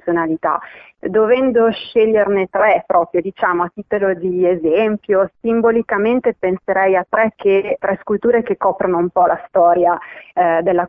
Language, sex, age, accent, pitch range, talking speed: Italian, female, 30-49, native, 170-200 Hz, 140 wpm